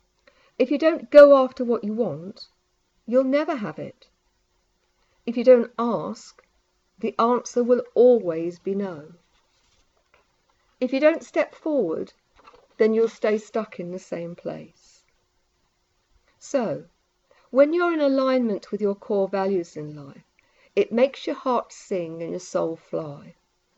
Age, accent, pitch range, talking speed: 50-69, British, 180-255 Hz, 140 wpm